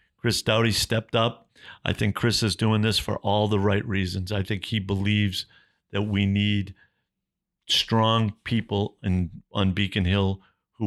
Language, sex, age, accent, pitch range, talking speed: English, male, 50-69, American, 100-135 Hz, 155 wpm